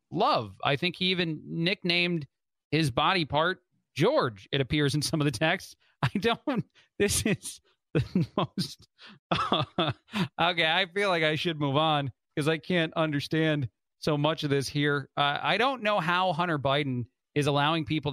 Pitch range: 135-160 Hz